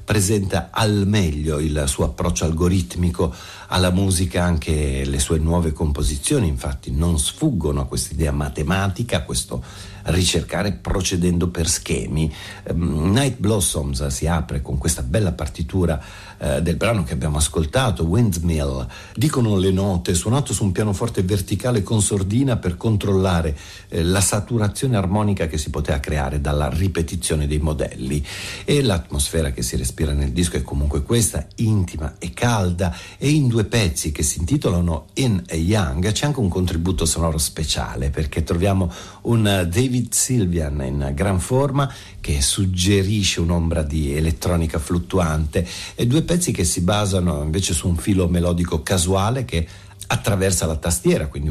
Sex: male